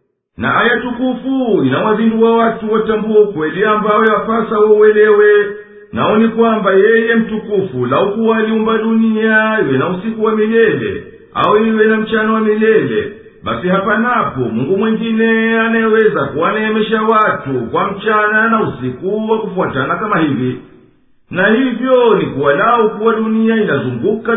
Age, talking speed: 50-69, 125 wpm